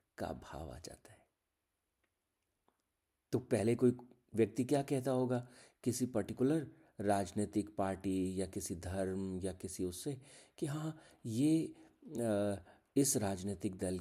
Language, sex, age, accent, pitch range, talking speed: Hindi, male, 50-69, native, 90-115 Hz, 120 wpm